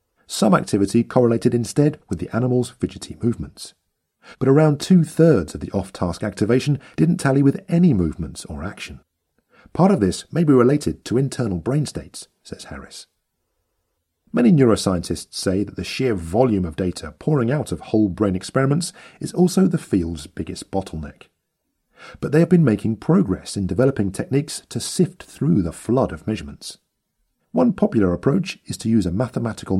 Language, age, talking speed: English, 40-59, 160 wpm